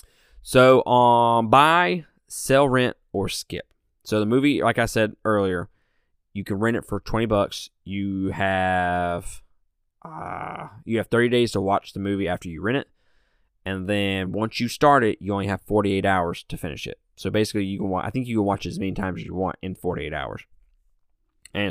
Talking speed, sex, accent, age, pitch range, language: 195 wpm, male, American, 20-39, 90-115 Hz, English